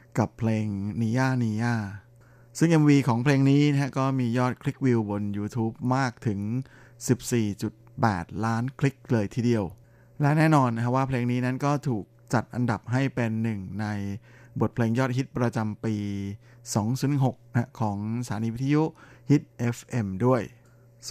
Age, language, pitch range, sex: 20-39, Thai, 115-130 Hz, male